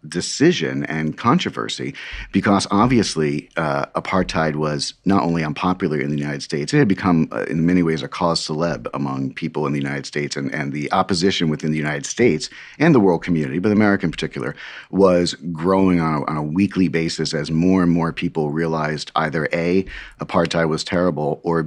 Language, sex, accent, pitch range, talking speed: English, male, American, 75-90 Hz, 185 wpm